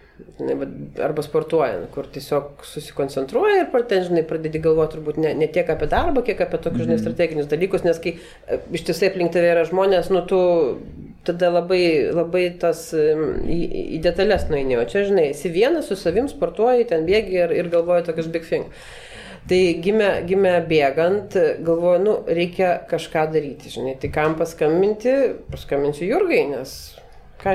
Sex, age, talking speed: female, 40-59, 150 wpm